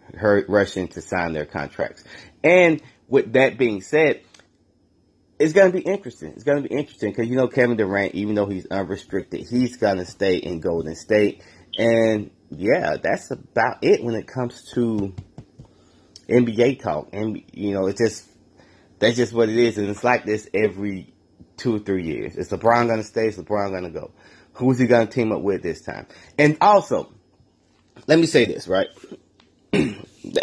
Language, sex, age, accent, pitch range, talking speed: English, male, 30-49, American, 95-120 Hz, 185 wpm